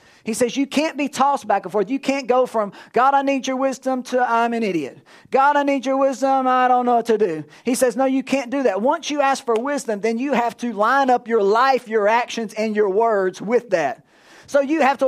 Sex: male